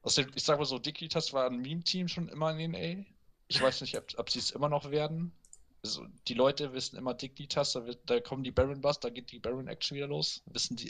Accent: German